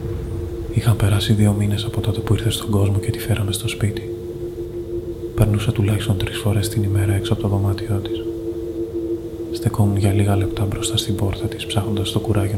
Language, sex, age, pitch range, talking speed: Greek, male, 20-39, 105-115 Hz, 175 wpm